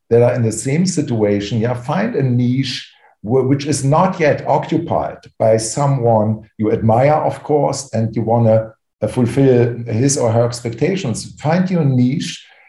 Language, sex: English, male